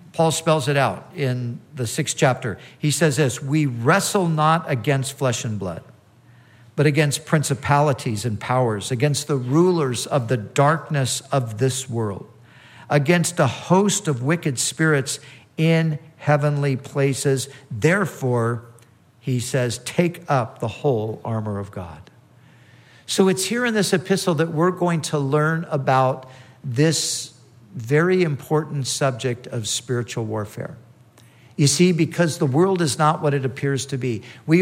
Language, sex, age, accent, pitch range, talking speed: English, male, 50-69, American, 125-170 Hz, 145 wpm